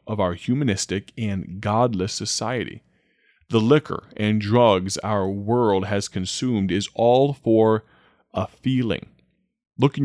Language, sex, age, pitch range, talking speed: English, male, 30-49, 100-125 Hz, 125 wpm